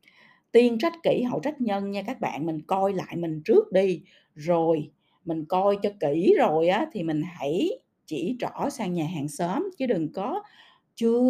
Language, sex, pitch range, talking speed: Vietnamese, female, 165-240 Hz, 185 wpm